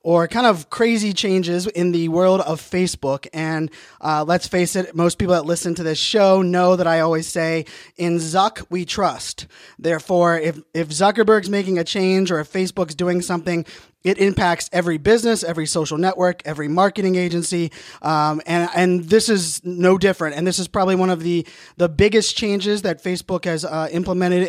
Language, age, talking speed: English, 20-39, 185 wpm